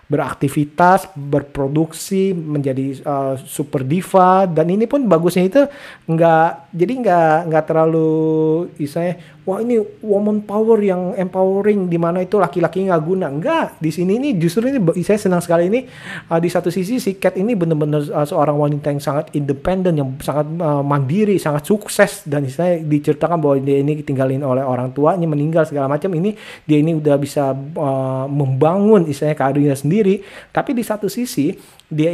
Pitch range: 145-185 Hz